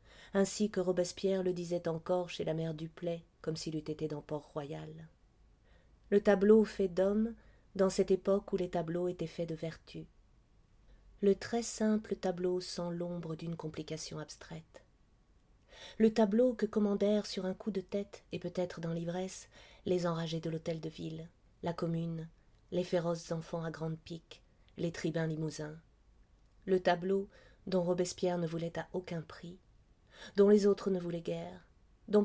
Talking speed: 160 wpm